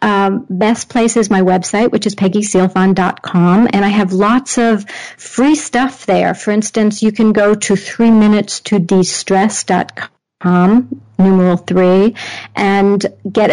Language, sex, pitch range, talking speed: English, female, 185-210 Hz, 140 wpm